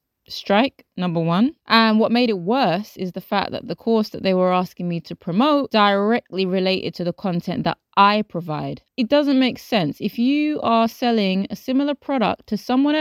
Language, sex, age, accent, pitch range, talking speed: English, female, 20-39, British, 190-255 Hz, 195 wpm